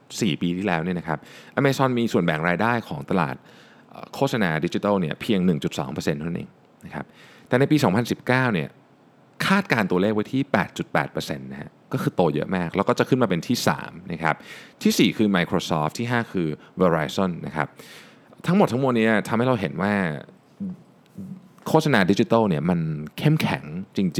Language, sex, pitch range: Thai, male, 90-140 Hz